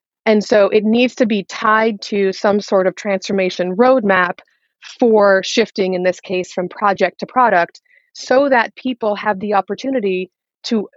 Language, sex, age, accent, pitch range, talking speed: English, female, 30-49, American, 185-235 Hz, 160 wpm